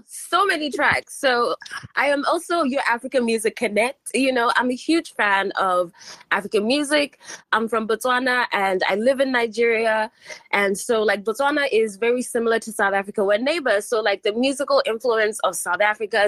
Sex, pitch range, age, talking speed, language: female, 195-280 Hz, 20-39, 175 wpm, English